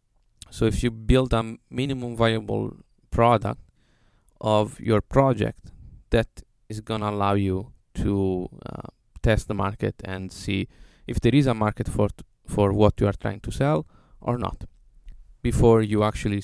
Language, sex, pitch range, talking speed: English, male, 100-120 Hz, 160 wpm